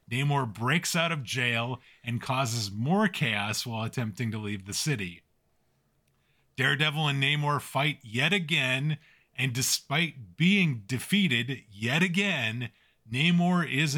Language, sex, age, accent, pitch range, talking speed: English, male, 30-49, American, 115-155 Hz, 125 wpm